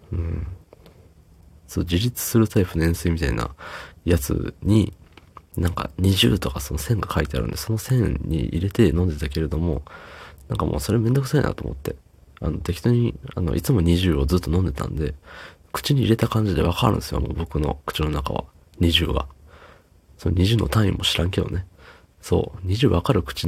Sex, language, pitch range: male, Japanese, 80-95 Hz